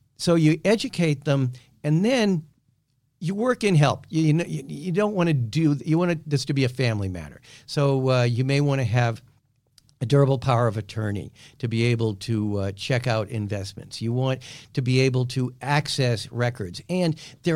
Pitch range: 115-145 Hz